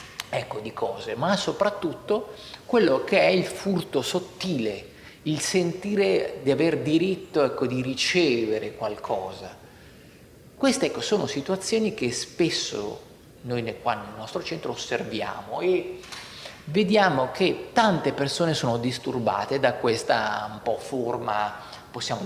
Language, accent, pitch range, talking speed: Italian, native, 130-215 Hz, 120 wpm